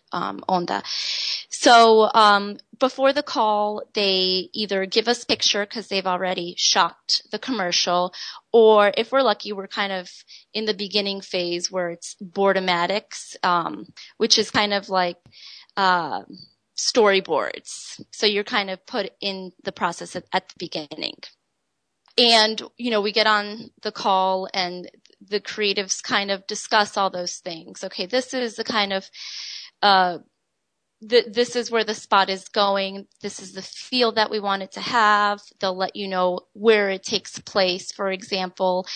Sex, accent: female, American